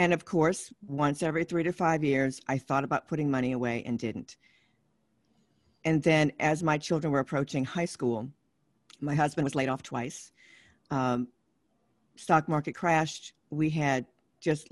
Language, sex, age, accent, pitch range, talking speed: English, female, 50-69, American, 130-160 Hz, 160 wpm